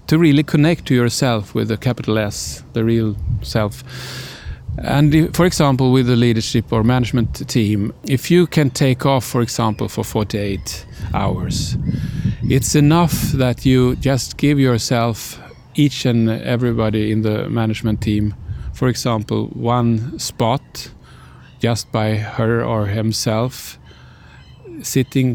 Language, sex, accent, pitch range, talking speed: Swedish, male, Norwegian, 110-130 Hz, 130 wpm